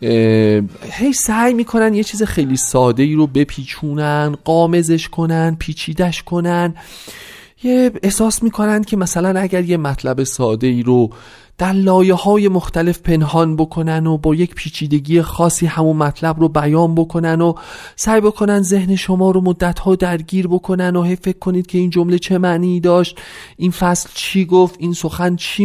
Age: 30-49